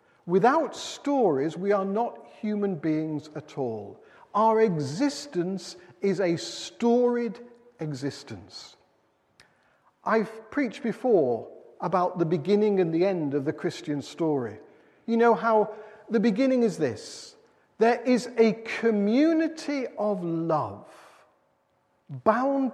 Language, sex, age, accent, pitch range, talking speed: English, male, 50-69, British, 160-250 Hz, 110 wpm